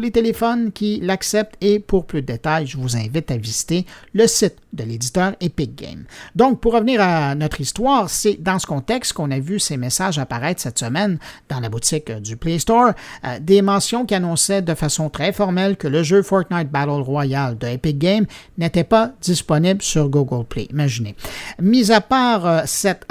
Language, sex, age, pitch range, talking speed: French, male, 50-69, 140-210 Hz, 190 wpm